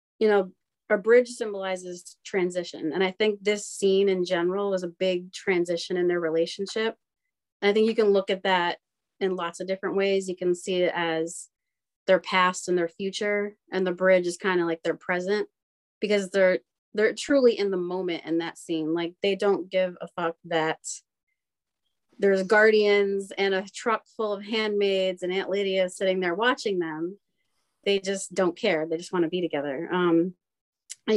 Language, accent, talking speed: English, American, 185 wpm